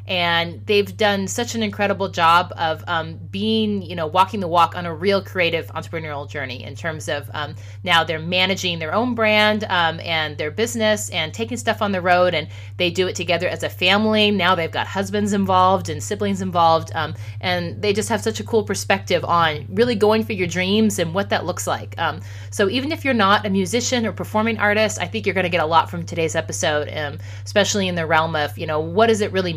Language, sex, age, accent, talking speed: English, female, 30-49, American, 225 wpm